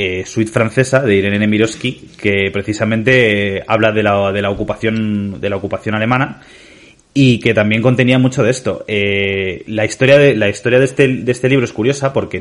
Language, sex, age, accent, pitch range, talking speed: Spanish, male, 30-49, Spanish, 100-130 Hz, 185 wpm